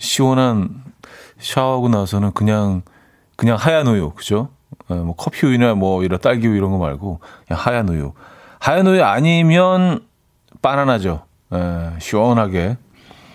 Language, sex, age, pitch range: Korean, male, 40-59, 95-130 Hz